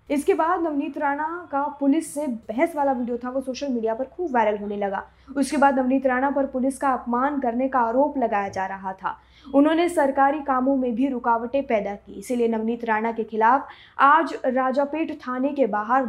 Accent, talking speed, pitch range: native, 195 wpm, 235-275 Hz